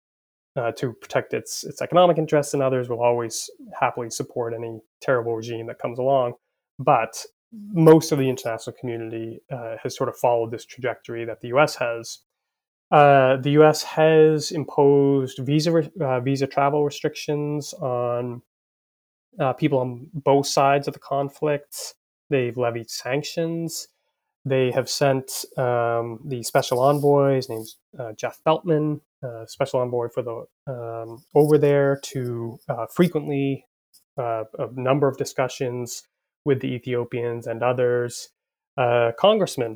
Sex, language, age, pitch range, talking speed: male, English, 20-39, 120-145 Hz, 140 wpm